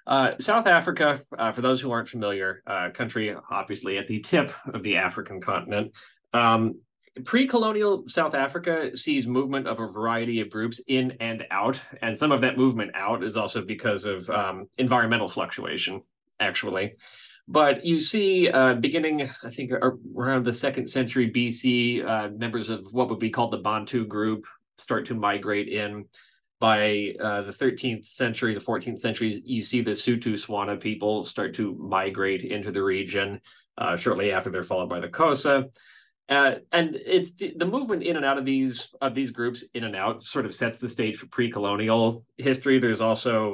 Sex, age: male, 30-49